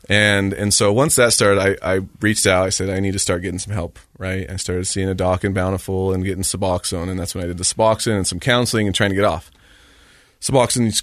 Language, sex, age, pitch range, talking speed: English, male, 30-49, 90-105 Hz, 255 wpm